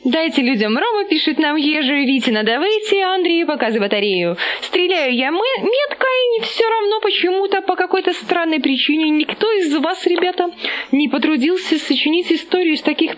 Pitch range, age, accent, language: 220-340 Hz, 20-39, native, Russian